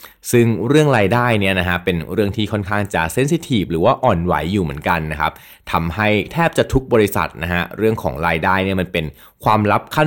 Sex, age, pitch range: male, 20-39, 90-115 Hz